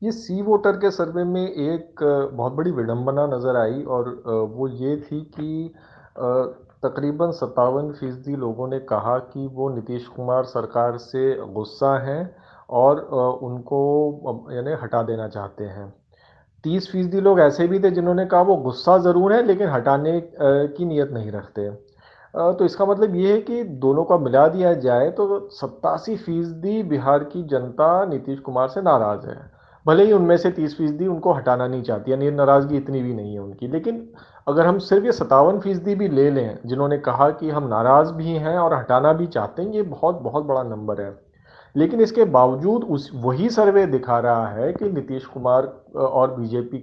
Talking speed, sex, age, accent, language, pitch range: 170 wpm, male, 40-59, native, Hindi, 125-180 Hz